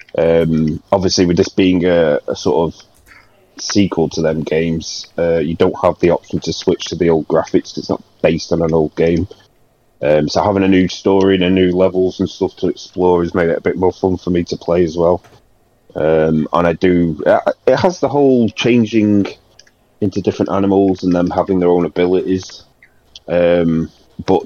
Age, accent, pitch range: 30-49, British, 80-95 Hz